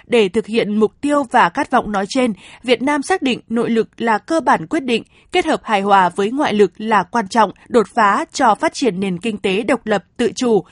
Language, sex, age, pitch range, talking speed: Vietnamese, female, 20-39, 210-255 Hz, 240 wpm